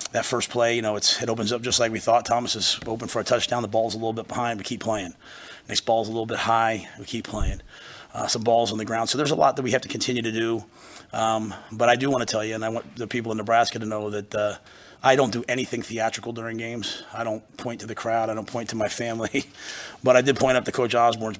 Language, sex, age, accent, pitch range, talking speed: English, male, 30-49, American, 110-120 Hz, 280 wpm